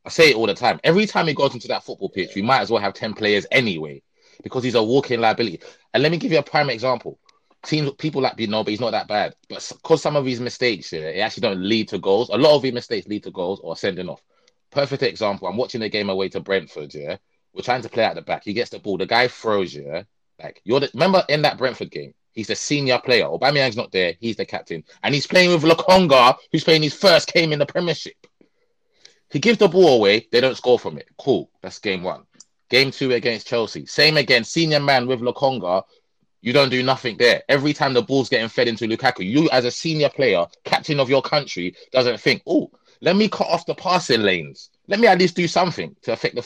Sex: male